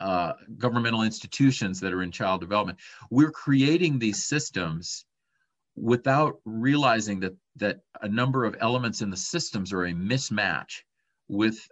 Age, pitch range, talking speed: 40-59, 100-135 Hz, 140 wpm